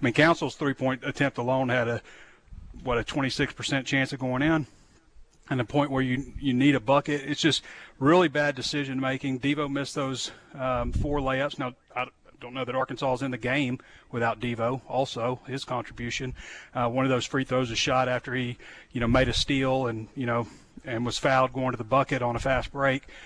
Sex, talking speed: male, 205 wpm